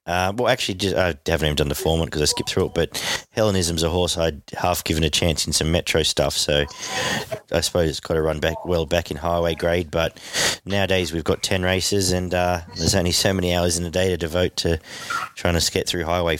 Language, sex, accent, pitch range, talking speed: English, male, Australian, 85-105 Hz, 240 wpm